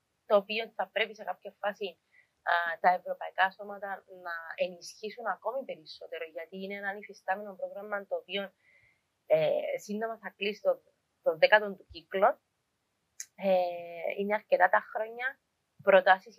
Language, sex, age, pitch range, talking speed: Greek, female, 20-39, 185-230 Hz, 135 wpm